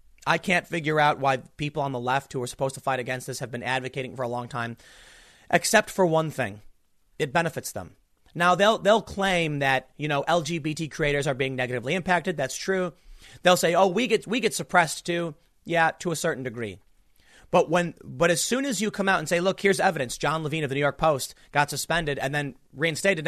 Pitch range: 130-185 Hz